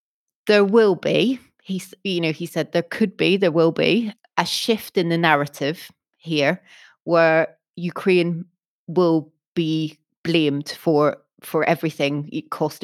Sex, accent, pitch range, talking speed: female, British, 150-185 Hz, 130 wpm